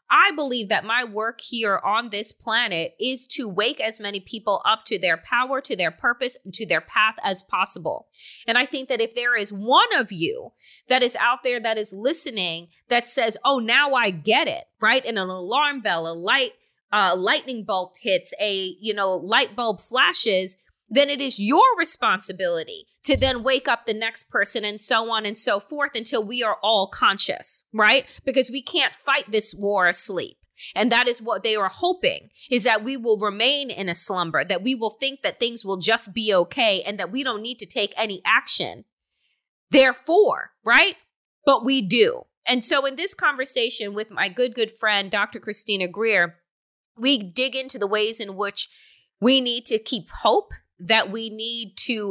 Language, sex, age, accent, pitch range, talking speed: English, female, 30-49, American, 210-270 Hz, 195 wpm